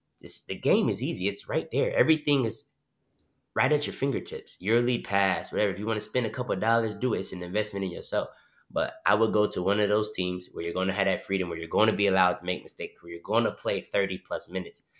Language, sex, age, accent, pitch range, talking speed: English, male, 20-39, American, 95-115 Hz, 260 wpm